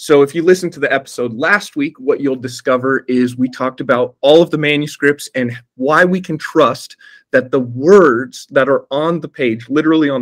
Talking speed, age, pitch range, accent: 205 wpm, 30-49, 125-155 Hz, American